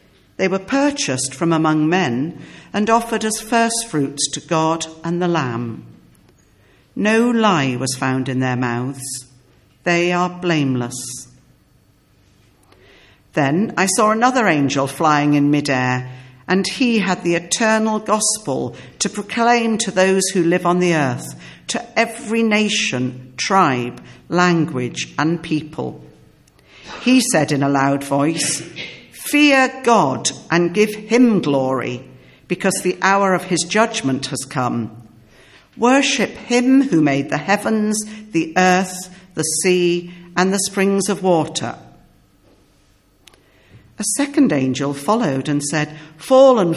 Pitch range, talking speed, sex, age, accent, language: 140-195 Hz, 125 wpm, female, 60-79, British, English